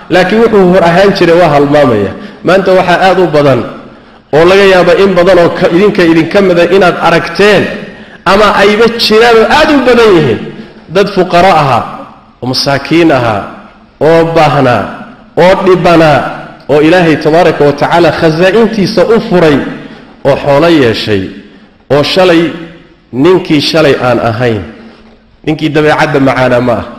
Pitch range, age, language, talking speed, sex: 155-215 Hz, 50-69, English, 55 wpm, male